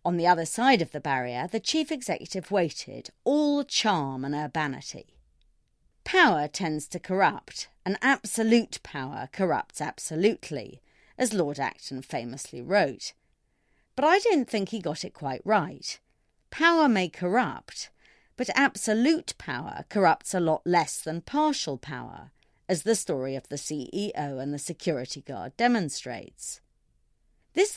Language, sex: English, female